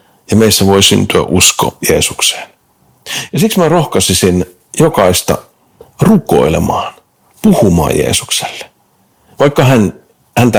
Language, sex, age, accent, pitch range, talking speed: Finnish, male, 50-69, native, 90-115 Hz, 95 wpm